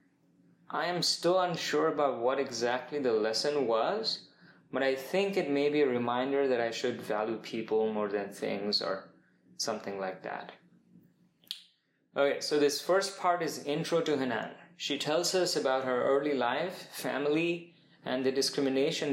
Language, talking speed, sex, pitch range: English, 155 wpm, male, 120-145 Hz